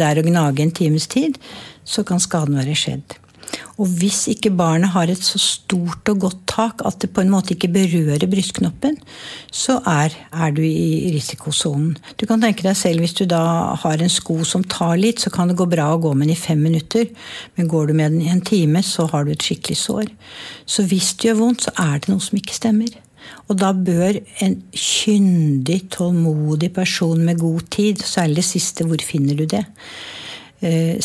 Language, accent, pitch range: English, Swedish, 155-195 Hz